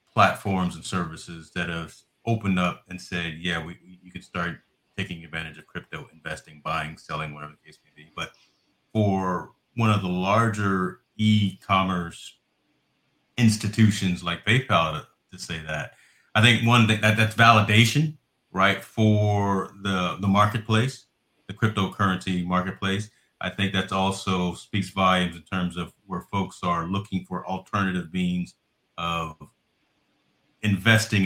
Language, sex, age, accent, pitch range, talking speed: English, male, 30-49, American, 90-105 Hz, 140 wpm